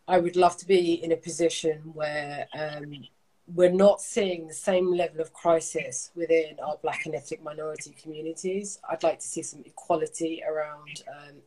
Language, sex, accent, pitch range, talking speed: English, female, British, 155-180 Hz, 175 wpm